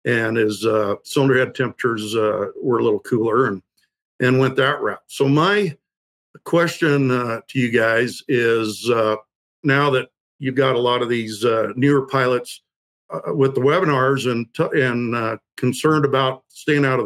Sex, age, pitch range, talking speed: male, 60-79, 120-145 Hz, 170 wpm